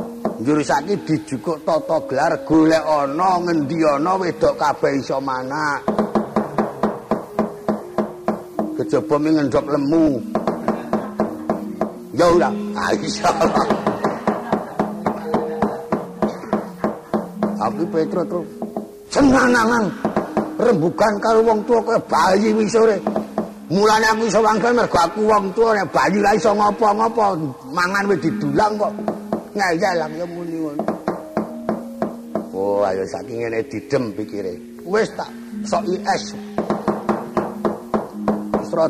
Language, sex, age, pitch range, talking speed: Indonesian, male, 50-69, 150-215 Hz, 95 wpm